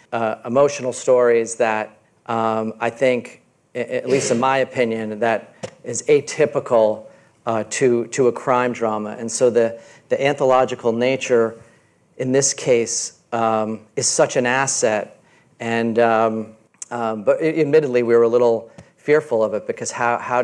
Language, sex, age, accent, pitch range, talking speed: English, male, 40-59, American, 110-125 Hz, 145 wpm